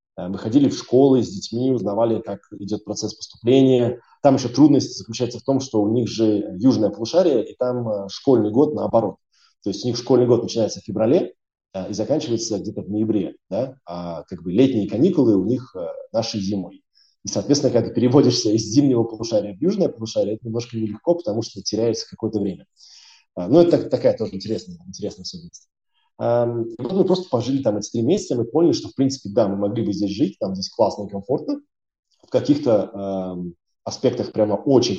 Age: 20-39